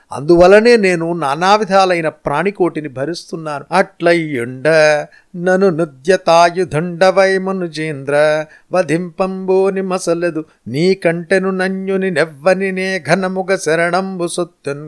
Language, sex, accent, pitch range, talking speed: Telugu, male, native, 160-190 Hz, 55 wpm